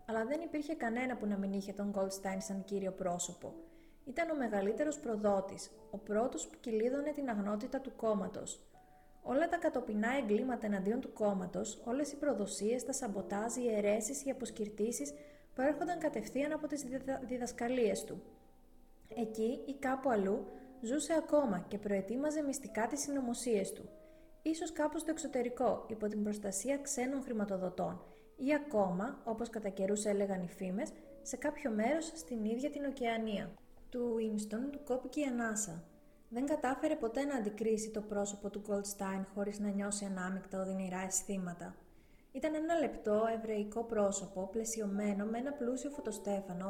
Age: 20-39